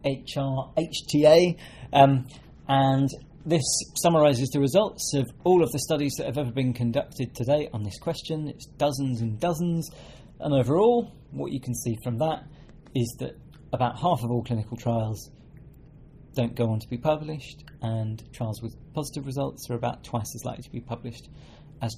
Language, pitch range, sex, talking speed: English, 120-145 Hz, male, 165 wpm